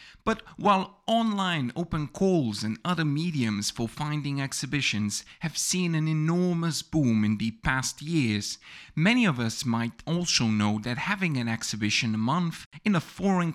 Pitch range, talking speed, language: 115-180 Hz, 155 wpm, English